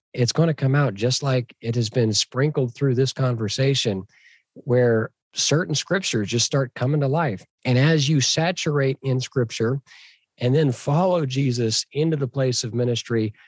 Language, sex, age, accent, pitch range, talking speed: English, male, 40-59, American, 120-155 Hz, 165 wpm